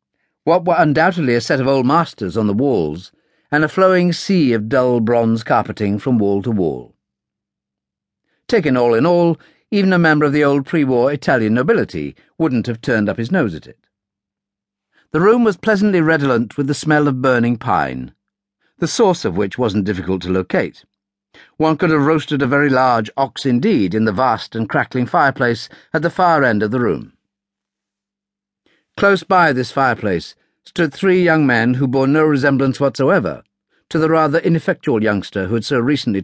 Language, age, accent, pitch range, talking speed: English, 50-69, British, 105-160 Hz, 175 wpm